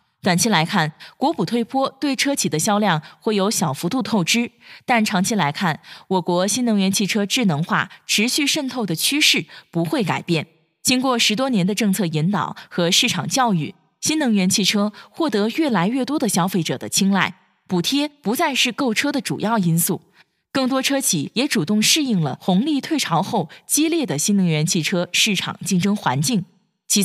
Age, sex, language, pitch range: 20-39, female, Chinese, 180-245 Hz